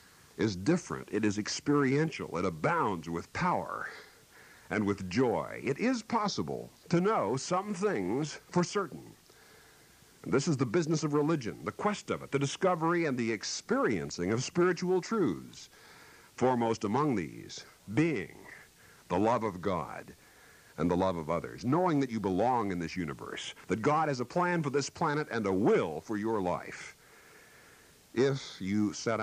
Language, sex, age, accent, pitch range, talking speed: English, male, 60-79, American, 90-145 Hz, 155 wpm